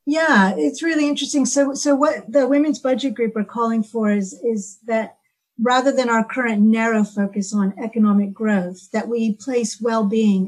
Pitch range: 205-250 Hz